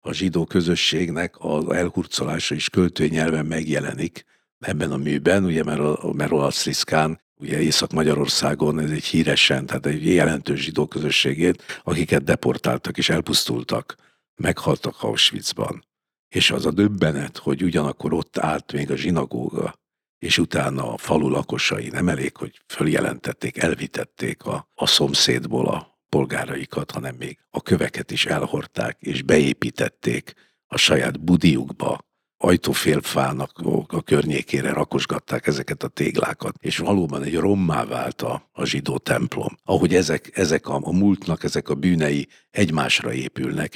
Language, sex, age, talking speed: Hungarian, male, 60-79, 130 wpm